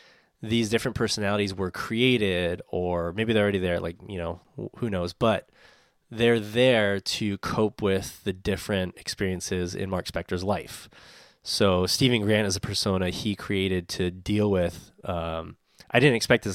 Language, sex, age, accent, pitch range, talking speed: English, male, 20-39, American, 95-115 Hz, 160 wpm